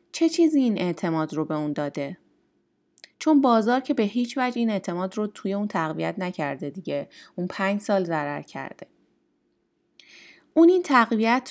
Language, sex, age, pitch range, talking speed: Persian, female, 30-49, 175-250 Hz, 155 wpm